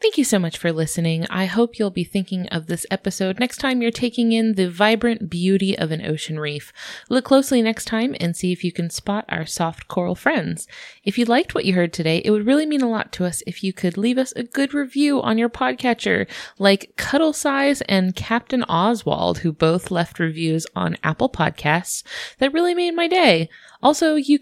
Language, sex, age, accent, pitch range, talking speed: English, female, 20-39, American, 175-245 Hz, 210 wpm